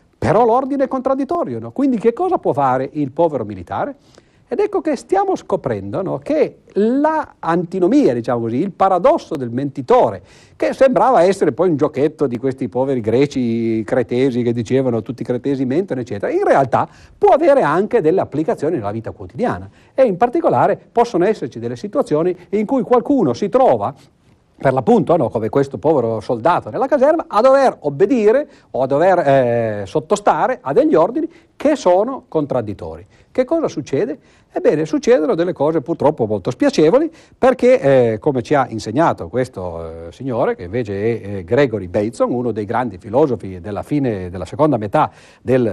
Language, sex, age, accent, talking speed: Italian, male, 50-69, native, 160 wpm